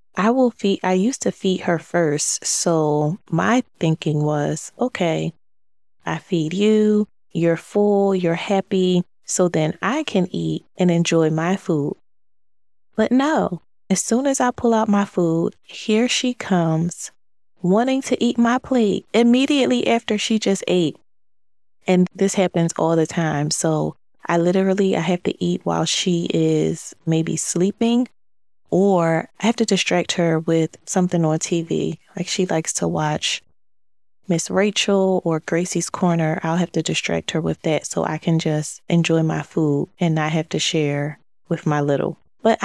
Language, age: English, 20-39